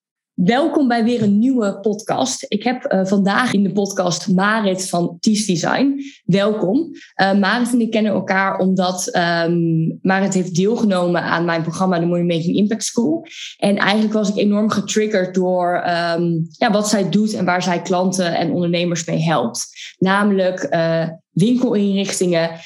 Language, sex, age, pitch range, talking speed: Dutch, female, 20-39, 170-195 Hz, 160 wpm